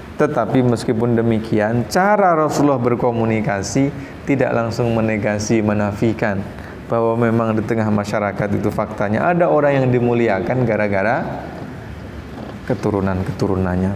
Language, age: Indonesian, 20-39